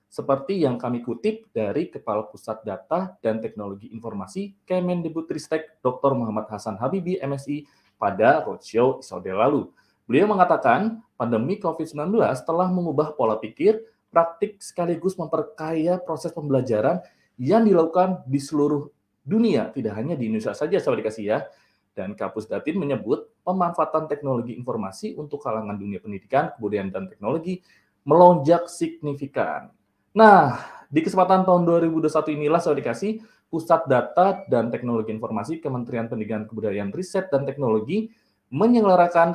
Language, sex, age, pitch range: Indonesian, male, 20-39, 120-185 Hz